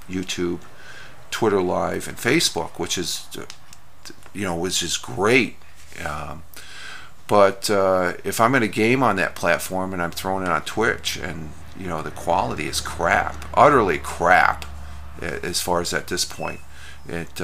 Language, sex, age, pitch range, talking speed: English, male, 50-69, 80-95 Hz, 155 wpm